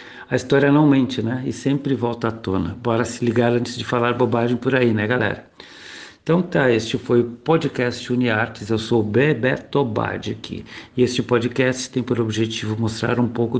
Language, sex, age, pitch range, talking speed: Portuguese, male, 60-79, 110-130 Hz, 190 wpm